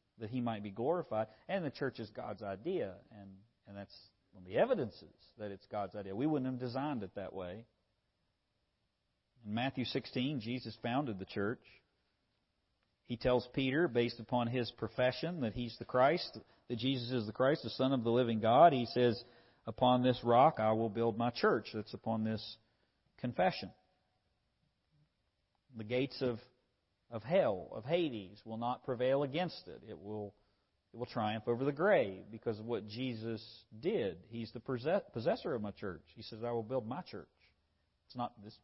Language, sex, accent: English, male, American